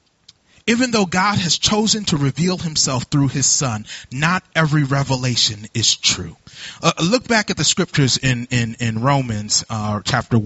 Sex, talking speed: male, 155 wpm